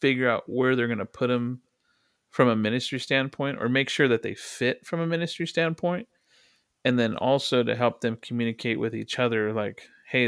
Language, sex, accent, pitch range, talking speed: English, male, American, 110-130 Hz, 200 wpm